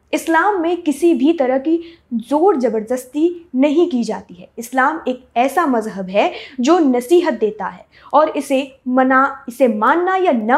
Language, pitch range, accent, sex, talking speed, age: Hindi, 240-320 Hz, native, female, 160 wpm, 20-39